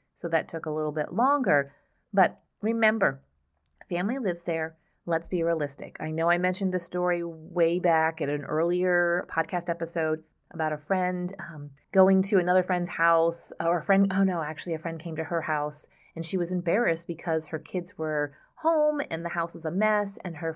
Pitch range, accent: 160-190 Hz, American